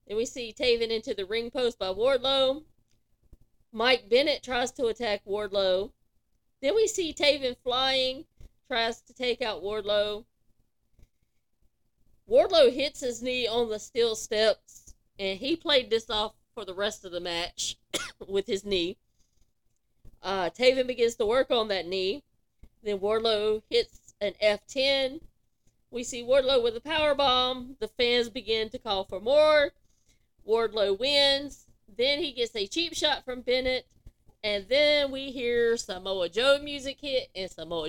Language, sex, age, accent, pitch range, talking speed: English, female, 40-59, American, 200-270 Hz, 150 wpm